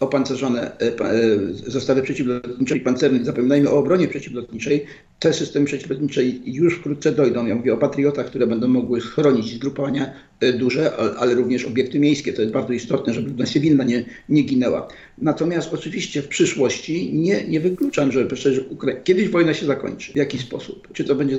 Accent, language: native, Polish